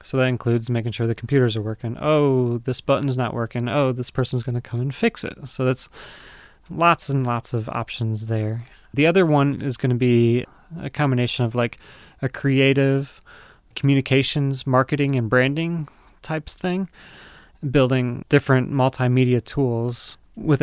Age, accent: 30-49, American